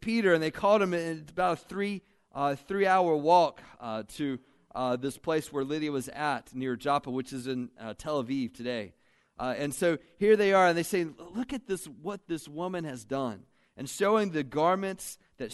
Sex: male